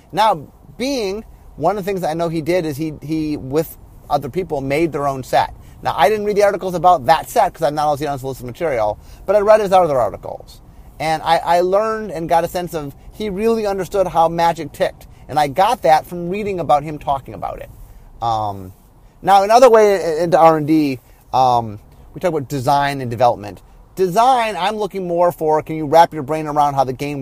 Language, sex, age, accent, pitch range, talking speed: English, male, 30-49, American, 135-180 Hz, 215 wpm